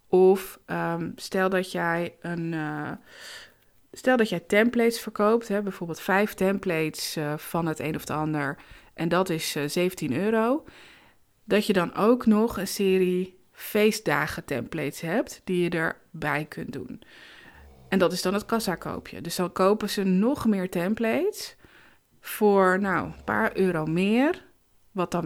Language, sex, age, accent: Dutch, female, 20-39, Dutch